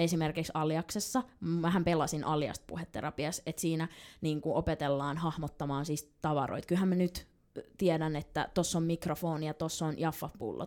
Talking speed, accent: 140 wpm, native